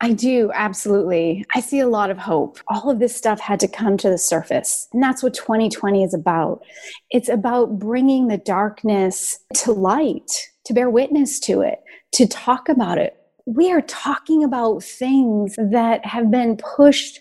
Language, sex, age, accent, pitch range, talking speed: English, female, 30-49, American, 205-270 Hz, 175 wpm